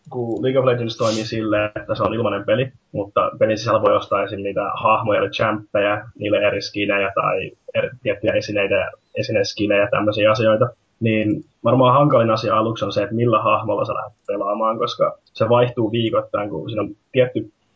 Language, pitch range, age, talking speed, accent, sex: Finnish, 105-125 Hz, 20-39, 175 wpm, native, male